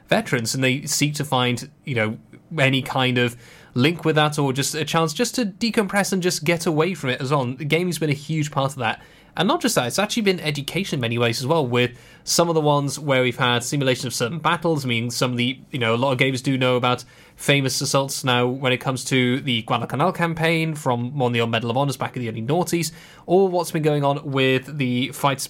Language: English